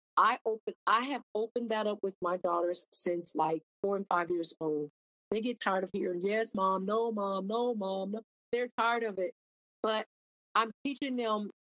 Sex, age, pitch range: female, 40-59, 180-220 Hz